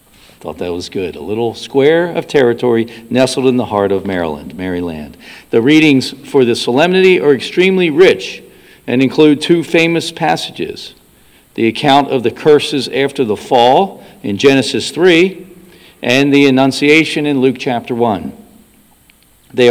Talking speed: 145 wpm